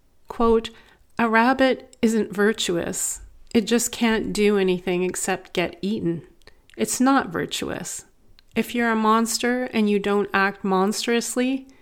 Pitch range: 185-225 Hz